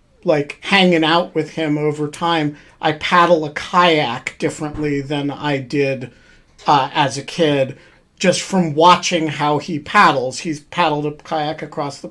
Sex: male